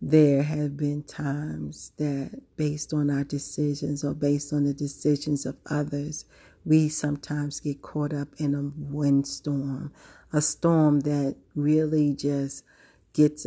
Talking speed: 135 wpm